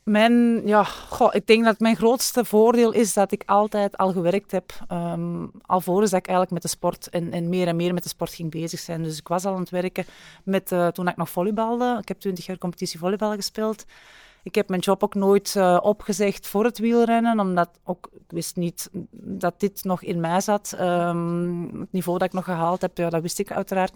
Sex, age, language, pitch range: female, 30-49, Dutch, 175-200 Hz